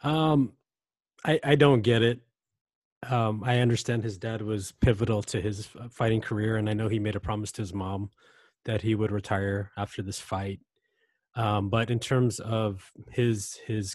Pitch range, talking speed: 105-125 Hz, 175 wpm